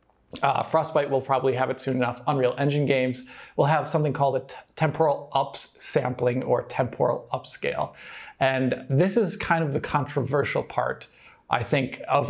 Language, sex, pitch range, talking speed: English, male, 135-155 Hz, 155 wpm